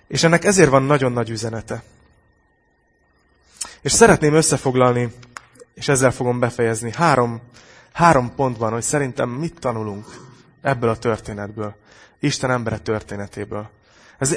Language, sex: Hungarian, male